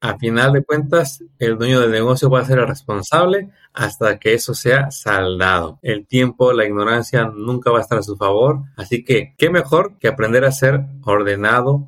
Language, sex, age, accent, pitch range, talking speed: Spanish, male, 30-49, Mexican, 115-140 Hz, 190 wpm